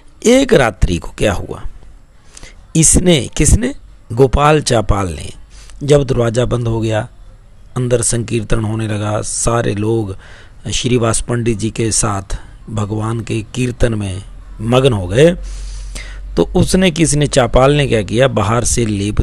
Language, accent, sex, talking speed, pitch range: Hindi, native, male, 135 wpm, 105-140 Hz